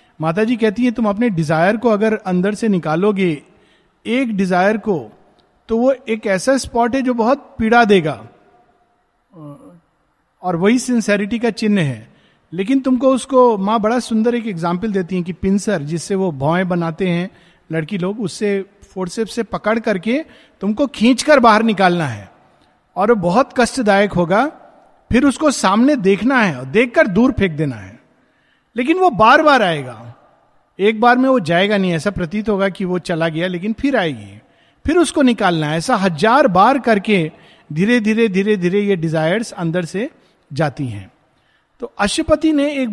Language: Hindi